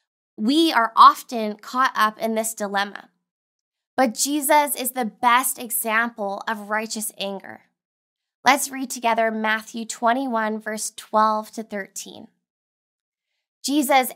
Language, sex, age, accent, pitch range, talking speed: English, female, 10-29, American, 220-255 Hz, 115 wpm